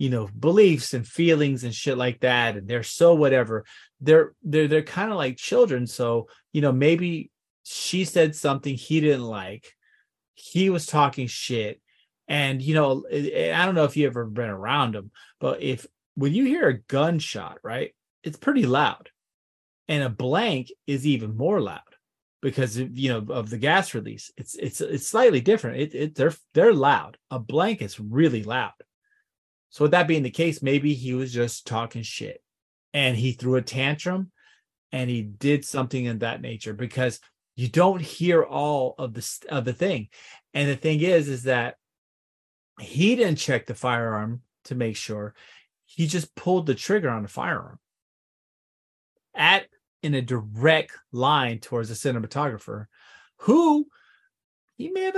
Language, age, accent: English, 30-49, American